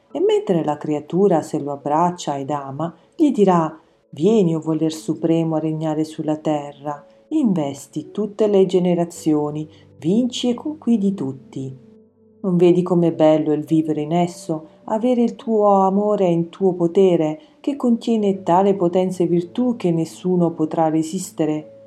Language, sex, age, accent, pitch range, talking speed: Italian, female, 40-59, native, 155-210 Hz, 145 wpm